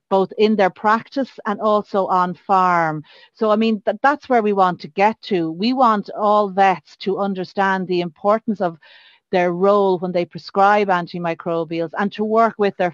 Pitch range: 170-195 Hz